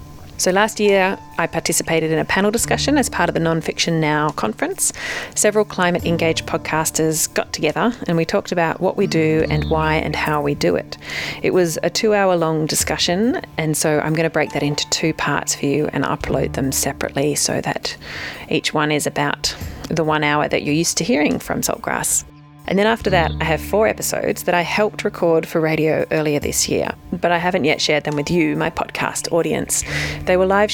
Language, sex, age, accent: English, female, 30-49, Australian